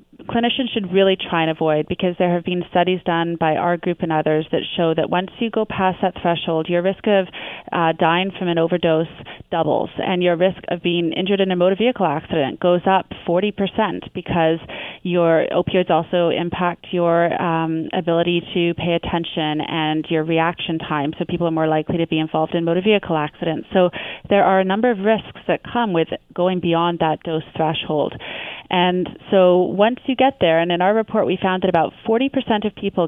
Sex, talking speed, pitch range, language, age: female, 195 wpm, 165-190 Hz, English, 30-49